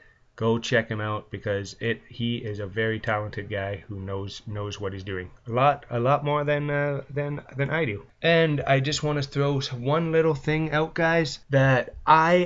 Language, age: English, 20-39